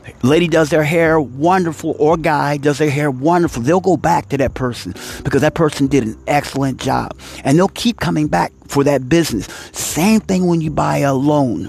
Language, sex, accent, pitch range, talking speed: English, male, American, 120-155 Hz, 200 wpm